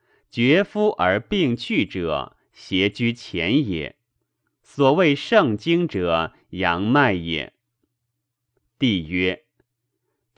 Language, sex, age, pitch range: Chinese, male, 30-49, 100-160 Hz